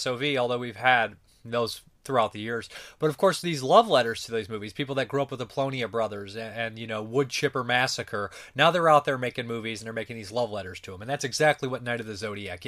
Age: 30-49